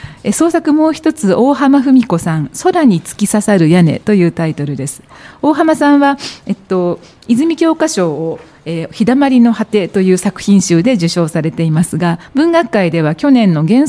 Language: Japanese